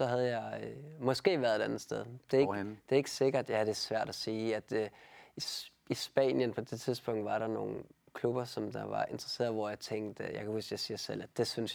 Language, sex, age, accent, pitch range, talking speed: Danish, male, 20-39, native, 110-130 Hz, 260 wpm